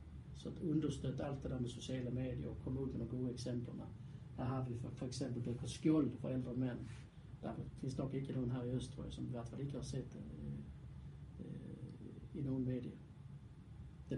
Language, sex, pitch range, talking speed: Danish, male, 130-160 Hz, 195 wpm